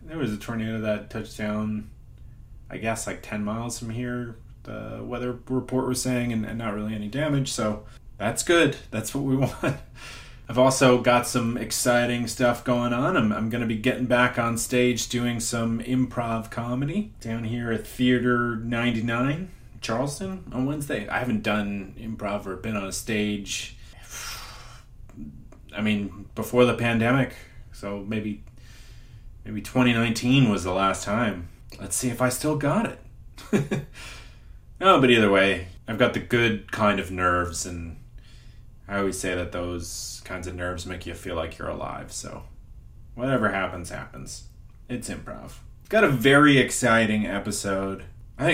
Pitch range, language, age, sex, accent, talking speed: 105-125 Hz, English, 30-49, male, American, 155 wpm